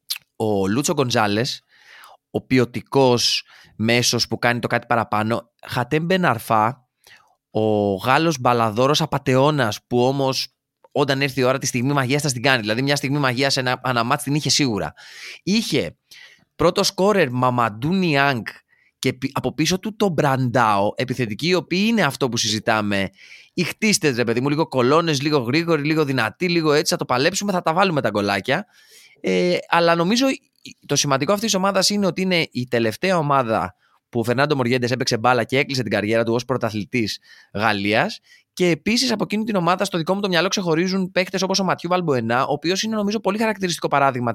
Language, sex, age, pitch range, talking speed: Greek, male, 20-39, 120-170 Hz, 175 wpm